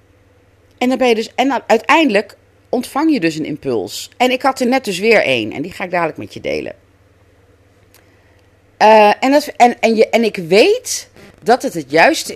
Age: 40-59